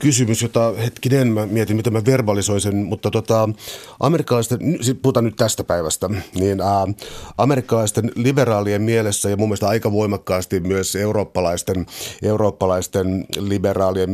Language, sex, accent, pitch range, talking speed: Finnish, male, native, 100-120 Hz, 125 wpm